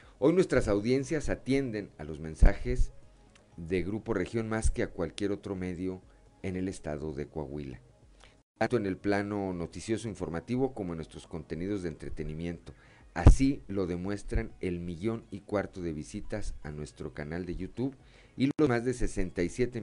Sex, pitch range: male, 85-110 Hz